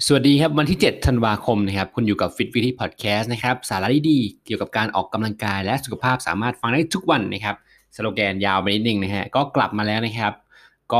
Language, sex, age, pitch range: Thai, male, 20-39, 100-125 Hz